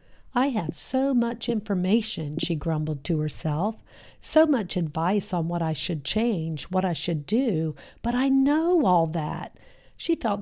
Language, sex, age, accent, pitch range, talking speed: English, female, 50-69, American, 165-225 Hz, 160 wpm